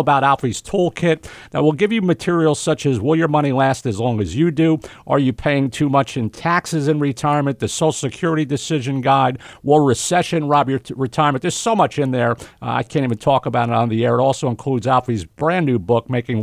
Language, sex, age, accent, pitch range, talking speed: English, male, 50-69, American, 125-155 Hz, 225 wpm